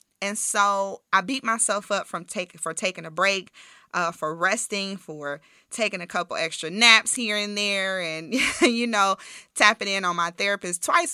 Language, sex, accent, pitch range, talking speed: English, female, American, 170-200 Hz, 180 wpm